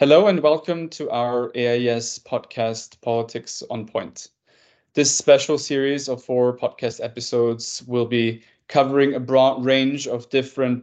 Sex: male